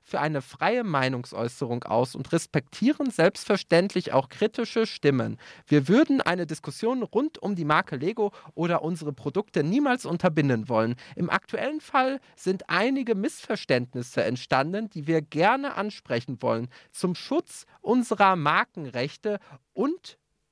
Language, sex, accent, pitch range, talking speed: German, male, German, 145-220 Hz, 125 wpm